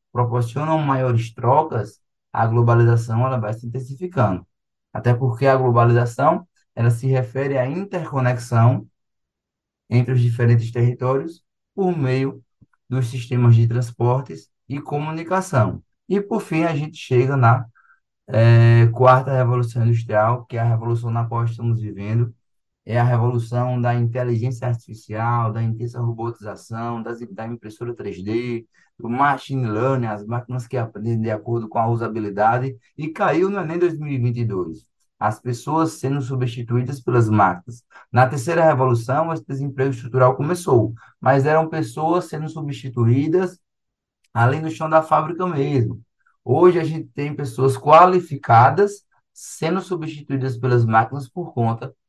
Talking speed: 130 wpm